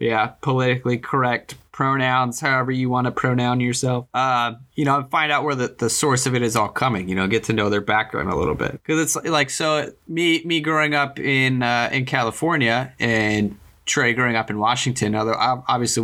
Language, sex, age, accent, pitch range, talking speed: English, male, 20-39, American, 115-140 Hz, 200 wpm